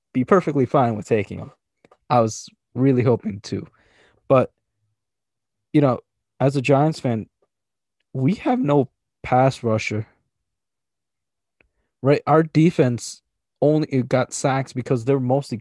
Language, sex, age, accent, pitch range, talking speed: English, male, 20-39, American, 115-145 Hz, 120 wpm